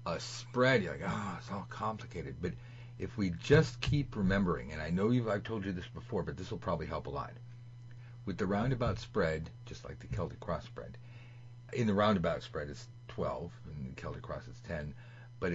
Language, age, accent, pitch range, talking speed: English, 40-59, American, 85-120 Hz, 210 wpm